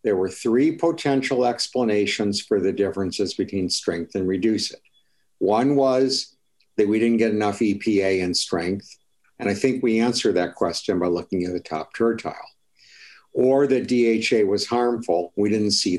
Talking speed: 165 wpm